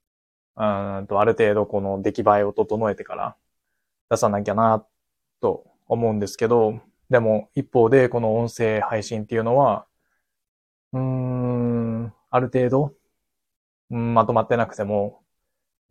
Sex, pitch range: male, 100-115 Hz